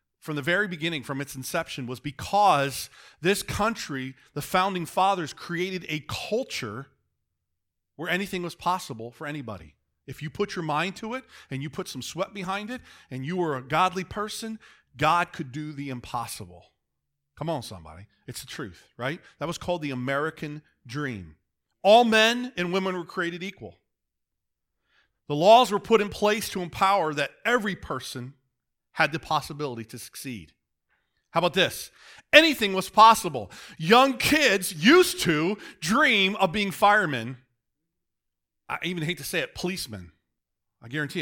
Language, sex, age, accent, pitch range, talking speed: English, male, 40-59, American, 120-190 Hz, 155 wpm